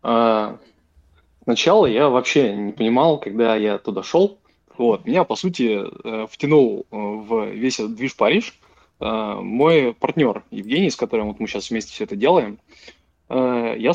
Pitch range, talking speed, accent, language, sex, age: 110-135 Hz, 155 wpm, native, Russian, male, 20-39